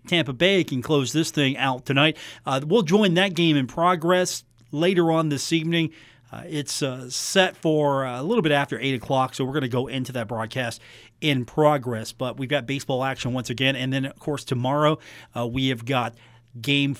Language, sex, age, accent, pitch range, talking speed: English, male, 40-59, American, 130-175 Hz, 200 wpm